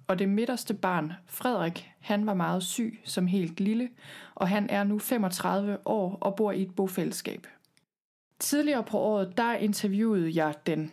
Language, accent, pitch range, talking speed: Danish, native, 180-210 Hz, 165 wpm